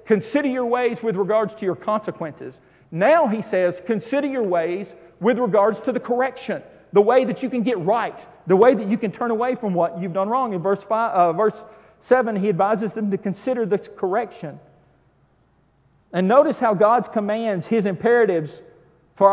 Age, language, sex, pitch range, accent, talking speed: 40-59, English, male, 200-255 Hz, American, 185 wpm